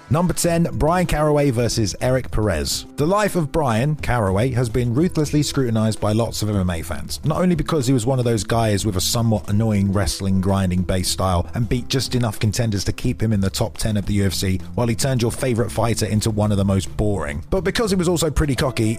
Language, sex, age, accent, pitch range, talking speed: English, male, 30-49, British, 105-145 Hz, 230 wpm